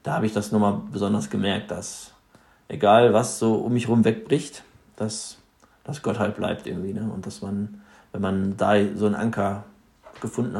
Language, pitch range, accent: German, 100-110 Hz, German